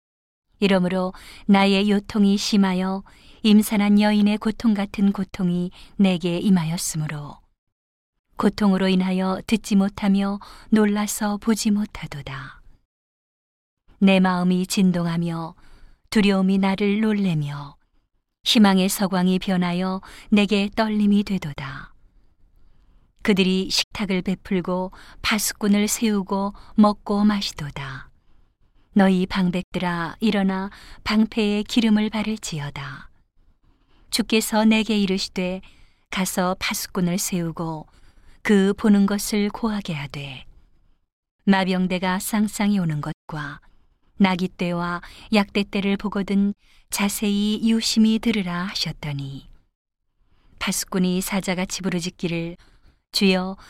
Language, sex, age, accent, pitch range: Korean, female, 40-59, native, 180-210 Hz